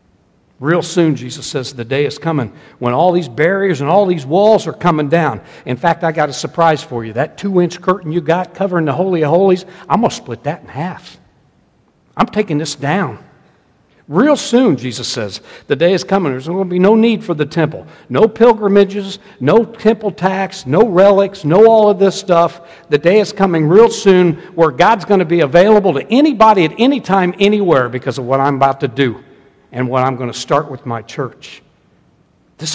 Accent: American